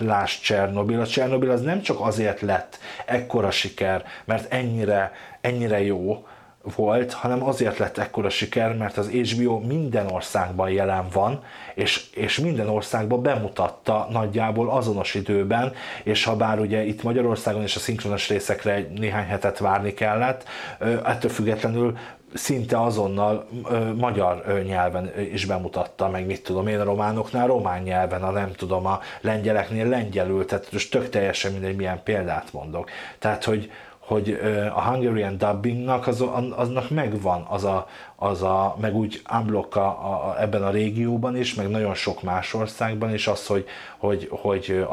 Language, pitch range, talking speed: Hungarian, 100-115 Hz, 150 wpm